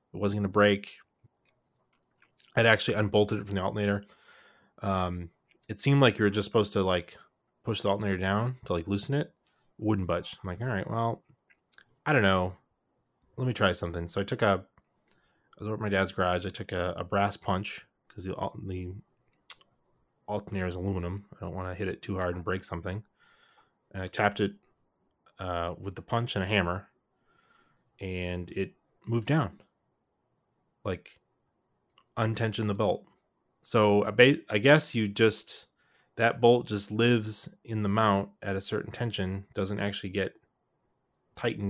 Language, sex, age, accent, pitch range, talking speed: English, male, 20-39, American, 90-110 Hz, 175 wpm